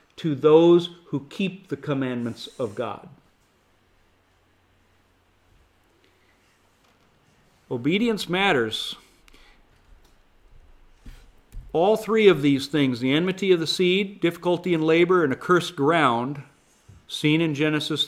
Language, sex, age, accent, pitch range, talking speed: English, male, 40-59, American, 130-165 Hz, 100 wpm